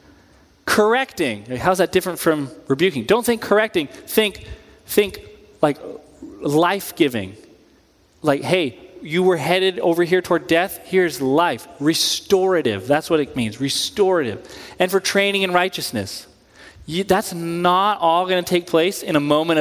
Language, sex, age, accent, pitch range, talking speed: English, male, 30-49, American, 160-210 Hz, 140 wpm